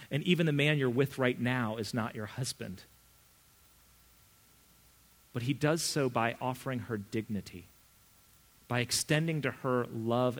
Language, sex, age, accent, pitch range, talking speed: English, male, 40-59, American, 120-160 Hz, 145 wpm